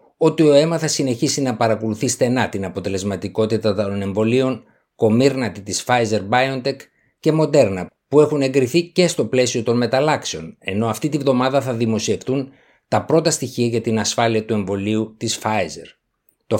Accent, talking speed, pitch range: native, 155 wpm, 110-140 Hz